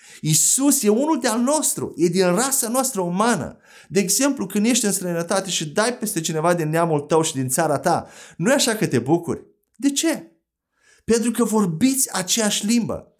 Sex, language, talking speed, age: male, Romanian, 180 wpm, 30-49